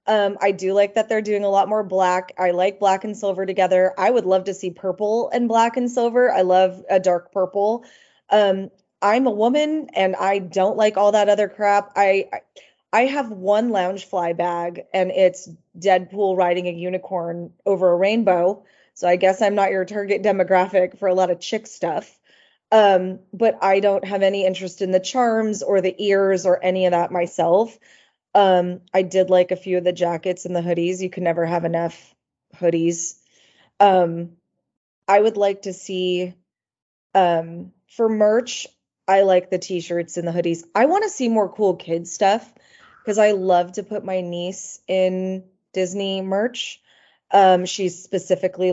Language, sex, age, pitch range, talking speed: English, female, 20-39, 175-200 Hz, 180 wpm